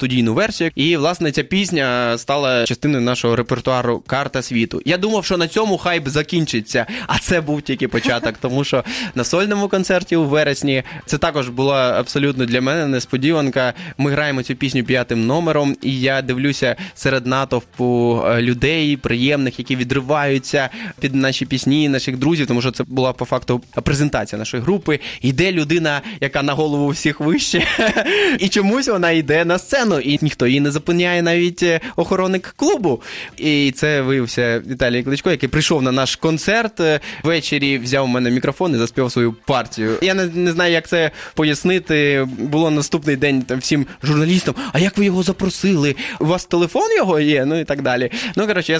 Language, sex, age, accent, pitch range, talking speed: Ukrainian, male, 20-39, native, 130-165 Hz, 170 wpm